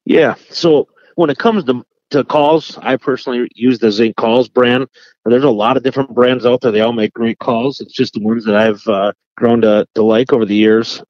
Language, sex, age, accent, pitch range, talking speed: English, male, 30-49, American, 110-130 Hz, 225 wpm